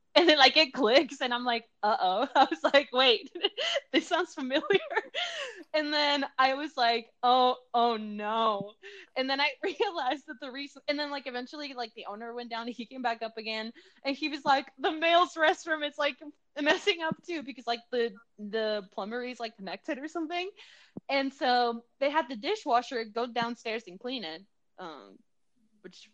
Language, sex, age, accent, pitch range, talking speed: English, female, 20-39, American, 220-300 Hz, 190 wpm